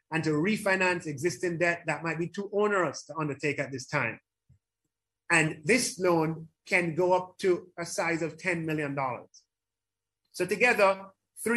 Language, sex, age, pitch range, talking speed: English, male, 30-49, 150-195 Hz, 150 wpm